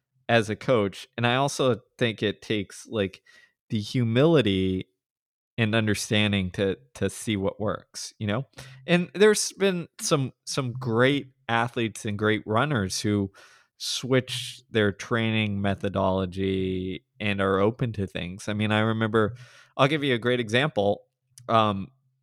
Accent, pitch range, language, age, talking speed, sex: American, 100-130 Hz, English, 20-39, 140 wpm, male